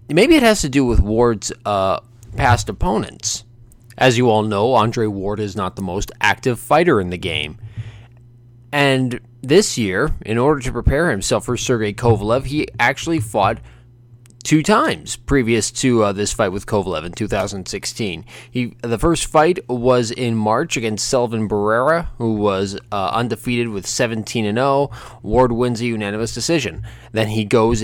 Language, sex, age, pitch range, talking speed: English, male, 20-39, 110-125 Hz, 165 wpm